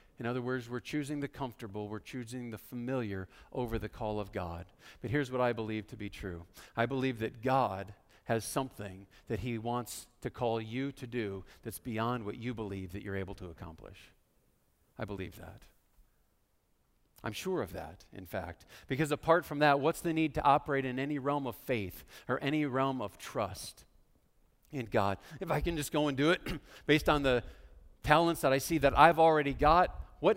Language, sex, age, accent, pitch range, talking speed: English, male, 50-69, American, 105-160 Hz, 195 wpm